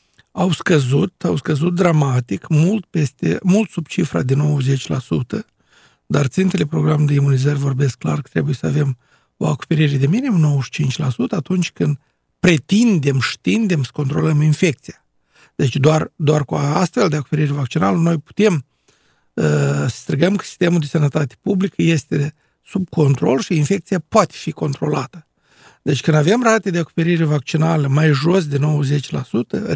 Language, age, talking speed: Romanian, 60-79, 145 wpm